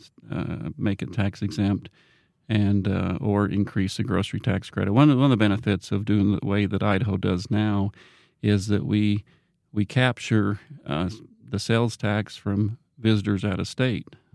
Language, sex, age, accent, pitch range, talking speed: English, male, 40-59, American, 100-125 Hz, 165 wpm